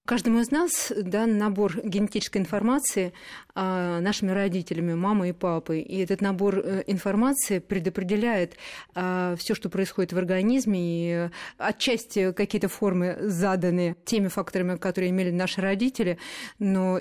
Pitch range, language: 180-205 Hz, Russian